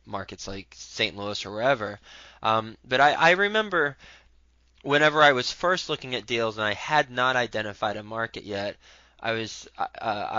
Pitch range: 105-120 Hz